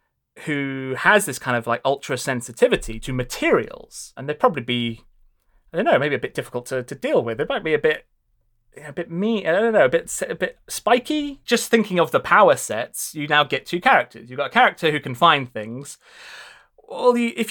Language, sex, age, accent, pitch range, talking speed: English, male, 30-49, British, 135-215 Hz, 215 wpm